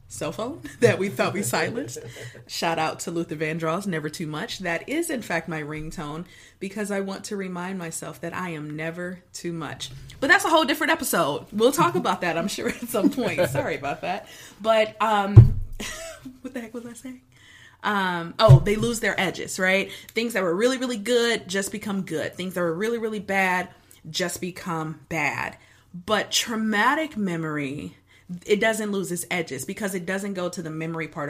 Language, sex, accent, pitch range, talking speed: English, female, American, 160-210 Hz, 190 wpm